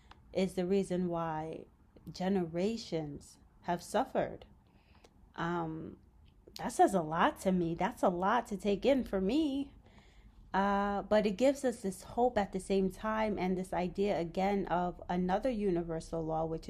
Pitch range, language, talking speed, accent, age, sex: 170-205 Hz, English, 150 wpm, American, 30-49, female